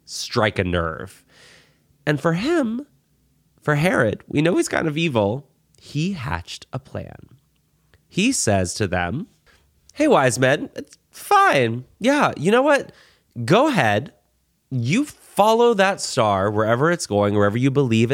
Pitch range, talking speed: 95-150 Hz, 140 wpm